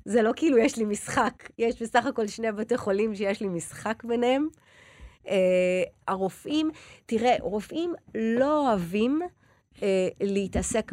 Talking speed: 130 wpm